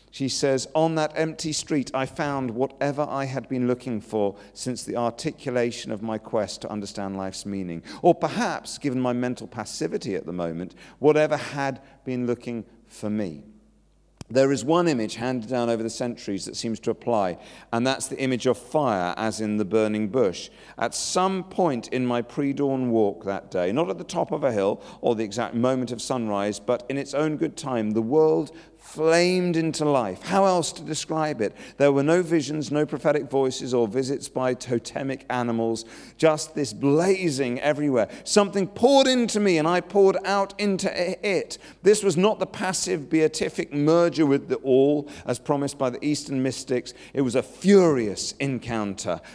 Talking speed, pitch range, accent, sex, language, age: 180 wpm, 115-155 Hz, British, male, English, 40-59